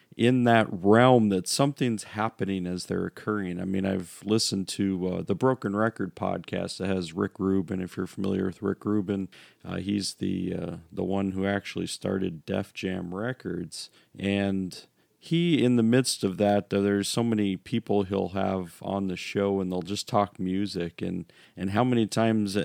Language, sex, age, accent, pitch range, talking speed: English, male, 40-59, American, 95-110 Hz, 180 wpm